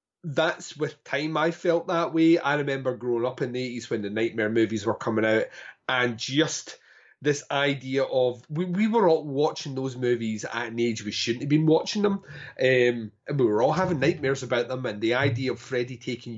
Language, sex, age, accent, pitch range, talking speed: English, male, 30-49, British, 115-145 Hz, 210 wpm